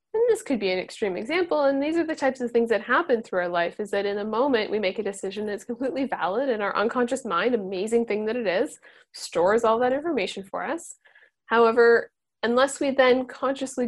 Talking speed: 220 wpm